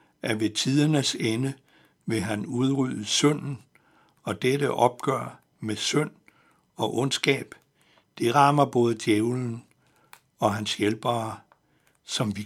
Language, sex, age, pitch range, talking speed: Danish, male, 60-79, 110-140 Hz, 115 wpm